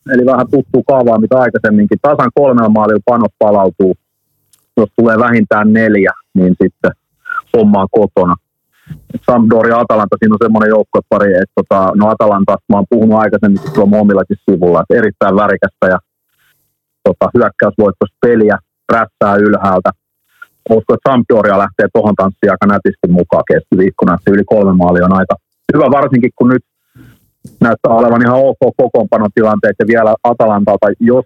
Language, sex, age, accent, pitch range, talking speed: Finnish, male, 30-49, native, 100-120 Hz, 135 wpm